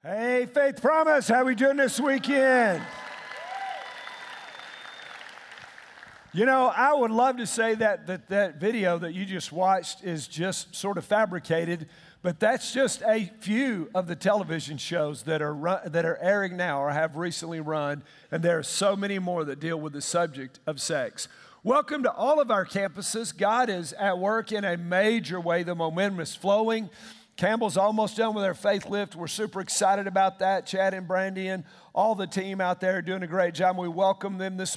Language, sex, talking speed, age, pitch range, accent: English, male, 190 wpm, 50-69, 175-220 Hz, American